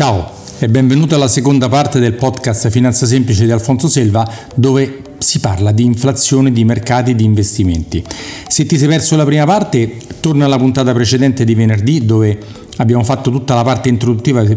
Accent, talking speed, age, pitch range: native, 175 wpm, 40-59, 110-140 Hz